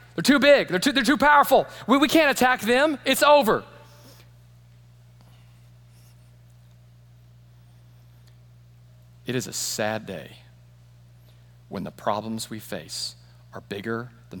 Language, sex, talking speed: English, male, 115 wpm